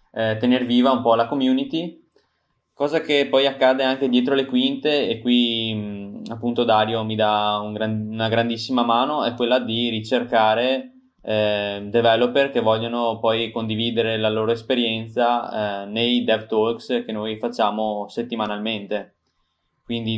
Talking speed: 135 wpm